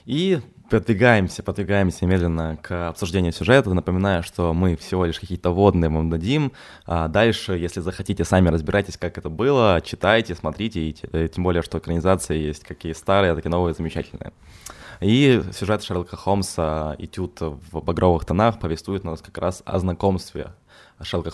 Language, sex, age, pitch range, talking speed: Ukrainian, male, 20-39, 85-100 Hz, 155 wpm